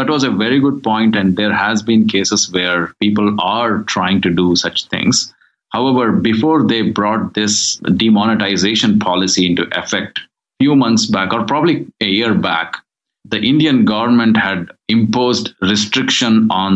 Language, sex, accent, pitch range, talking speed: English, male, Indian, 95-115 Hz, 160 wpm